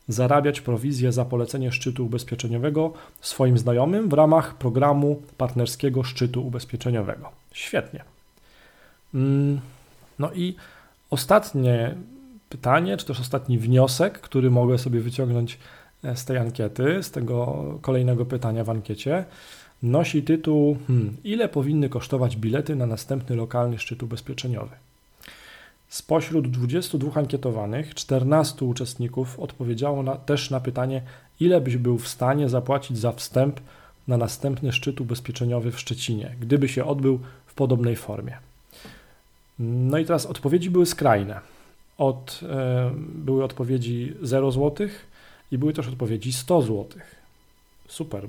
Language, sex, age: Polish, male, 40-59